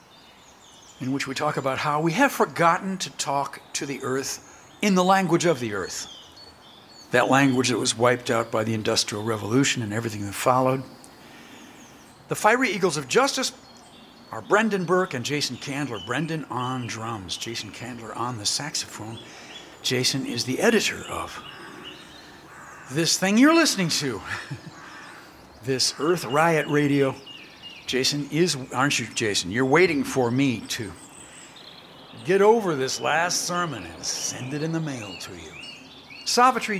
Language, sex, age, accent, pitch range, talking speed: English, male, 60-79, American, 125-170 Hz, 150 wpm